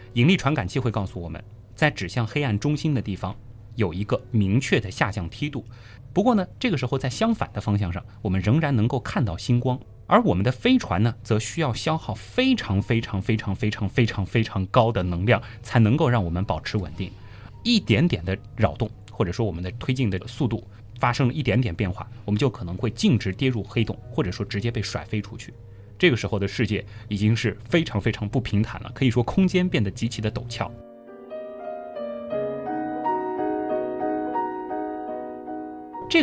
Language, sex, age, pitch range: Chinese, male, 20-39, 100-125 Hz